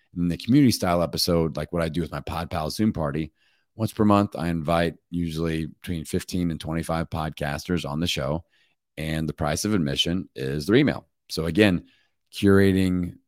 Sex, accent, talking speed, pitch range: male, American, 180 wpm, 75-90 Hz